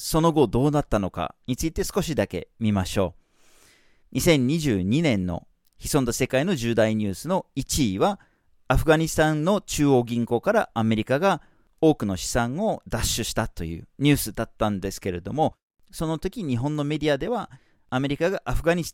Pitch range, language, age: 105-155 Hz, Japanese, 40-59